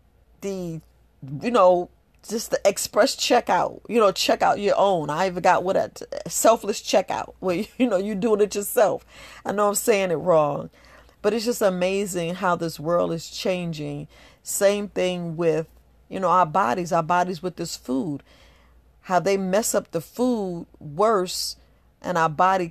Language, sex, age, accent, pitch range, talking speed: English, female, 40-59, American, 150-180 Hz, 170 wpm